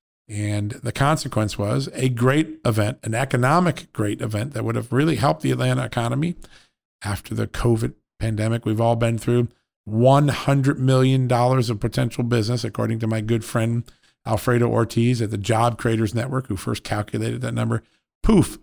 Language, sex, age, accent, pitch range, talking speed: English, male, 50-69, American, 105-120 Hz, 160 wpm